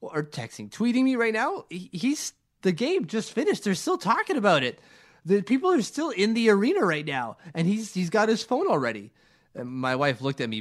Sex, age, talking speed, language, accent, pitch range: male, 20-39, 215 wpm, English, American, 140-225 Hz